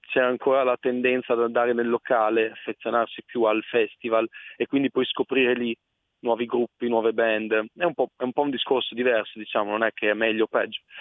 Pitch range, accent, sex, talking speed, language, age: 110-125 Hz, native, male, 205 wpm, Italian, 20-39